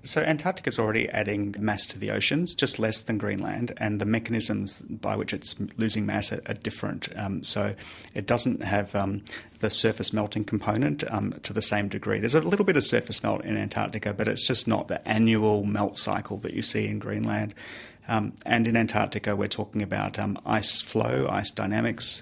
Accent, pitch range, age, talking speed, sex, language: Australian, 100-110 Hz, 30-49, 195 wpm, male, English